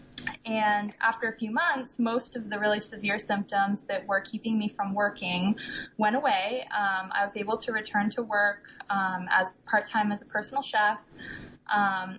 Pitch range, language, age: 195-225 Hz, English, 20-39